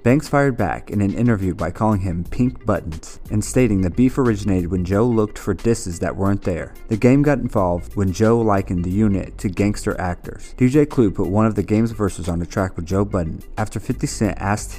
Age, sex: 30-49, male